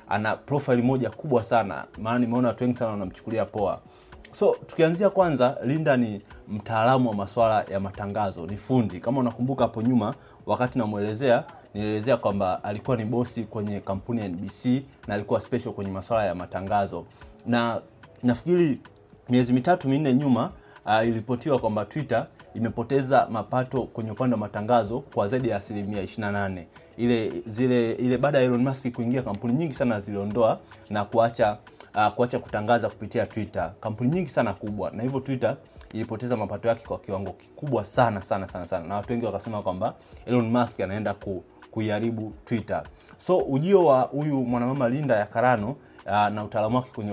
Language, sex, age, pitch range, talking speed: Swahili, male, 30-49, 105-125 Hz, 160 wpm